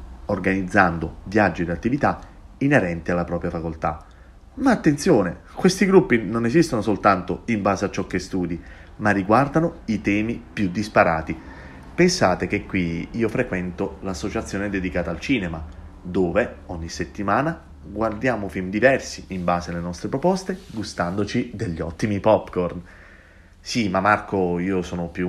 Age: 30-49